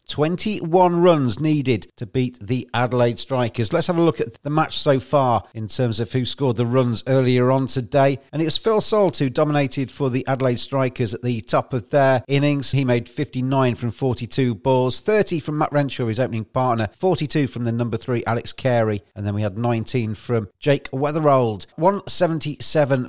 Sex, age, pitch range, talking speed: male, 40-59, 120-150 Hz, 190 wpm